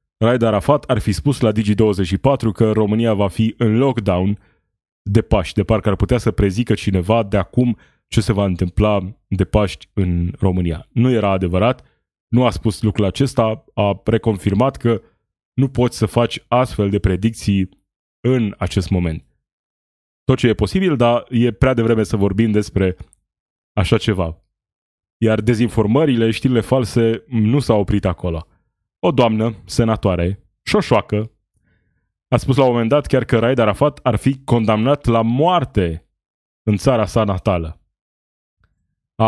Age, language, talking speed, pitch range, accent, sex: 20-39, Romanian, 150 wpm, 100-120 Hz, native, male